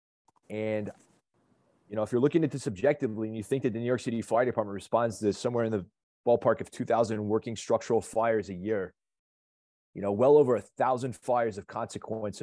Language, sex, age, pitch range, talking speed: English, male, 20-39, 100-120 Hz, 200 wpm